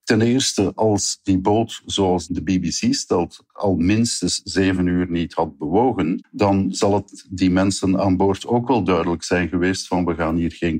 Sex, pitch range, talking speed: male, 90-110 Hz, 185 wpm